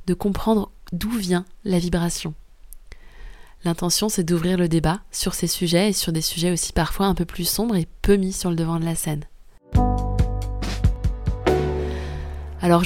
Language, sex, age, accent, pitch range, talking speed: French, female, 20-39, French, 170-200 Hz, 160 wpm